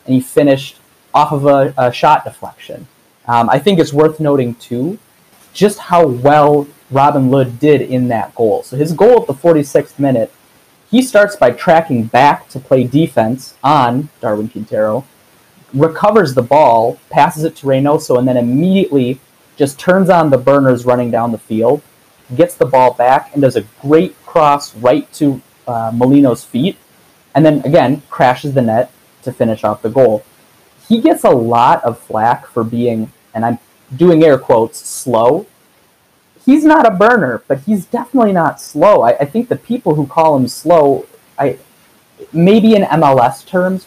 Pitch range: 125-165 Hz